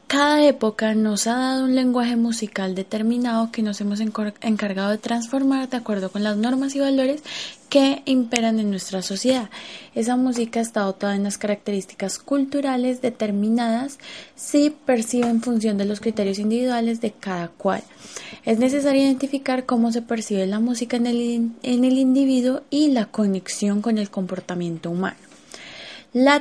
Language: Spanish